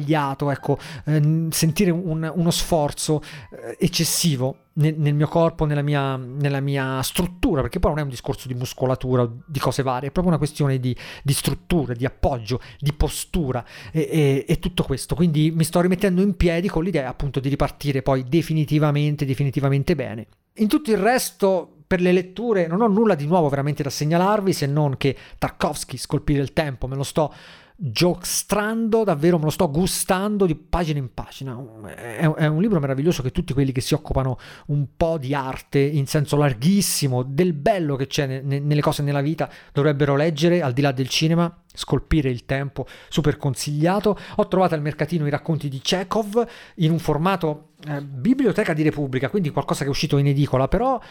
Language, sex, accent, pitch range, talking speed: Italian, male, native, 140-175 Hz, 180 wpm